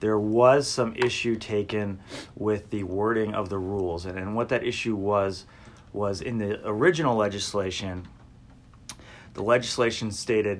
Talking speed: 140 wpm